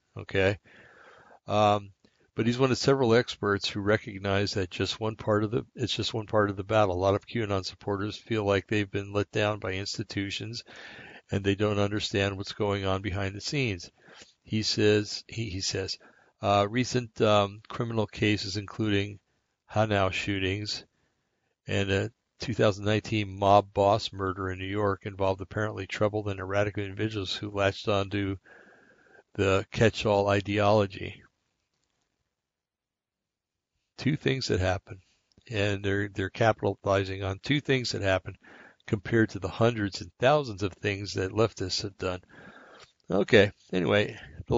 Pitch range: 100-110 Hz